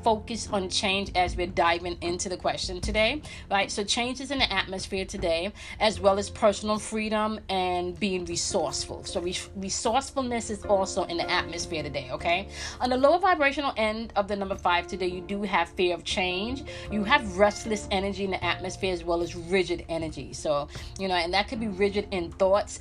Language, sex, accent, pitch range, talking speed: English, female, American, 180-220 Hz, 190 wpm